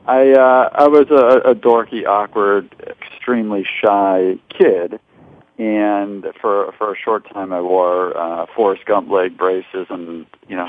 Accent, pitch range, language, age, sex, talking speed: American, 95-115 Hz, English, 40-59, male, 150 wpm